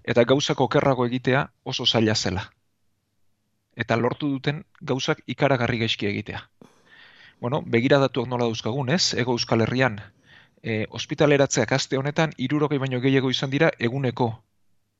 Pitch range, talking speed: 110-140 Hz, 130 wpm